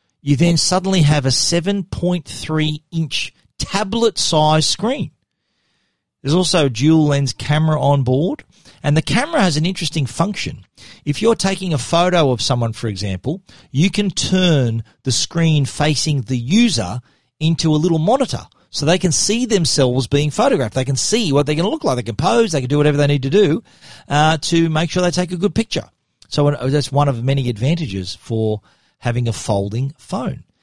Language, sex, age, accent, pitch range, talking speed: English, male, 40-59, Australian, 130-180 Hz, 180 wpm